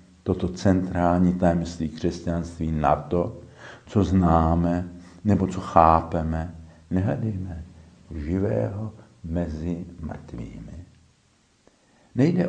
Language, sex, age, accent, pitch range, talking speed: Czech, male, 60-79, native, 80-100 Hz, 75 wpm